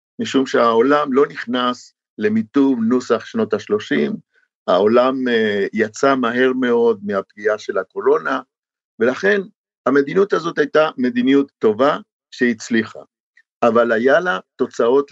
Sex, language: male, Hebrew